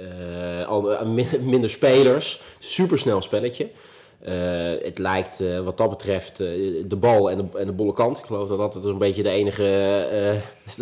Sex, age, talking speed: male, 30-49, 180 wpm